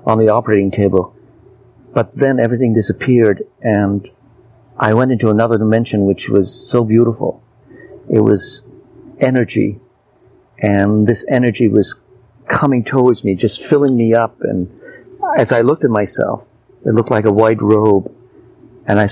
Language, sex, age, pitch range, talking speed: English, male, 50-69, 105-125 Hz, 145 wpm